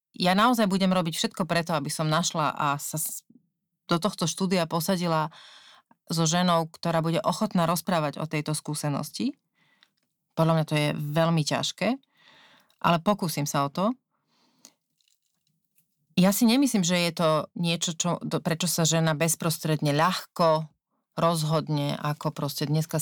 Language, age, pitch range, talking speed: Slovak, 30-49, 155-195 Hz, 135 wpm